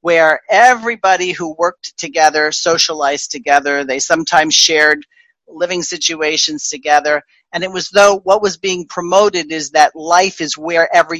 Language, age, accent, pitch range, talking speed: English, 40-59, American, 150-195 Hz, 140 wpm